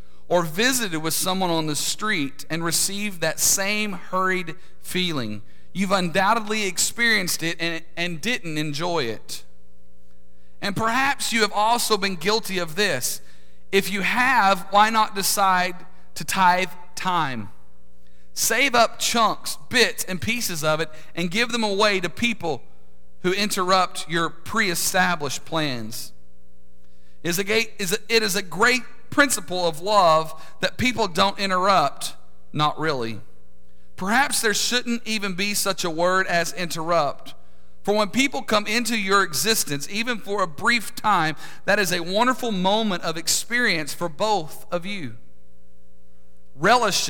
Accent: American